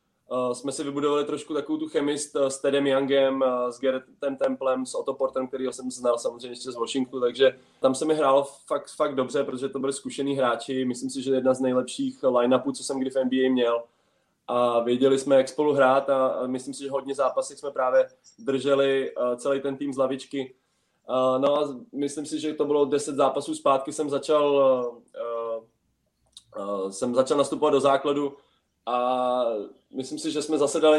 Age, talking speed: 20-39, 190 wpm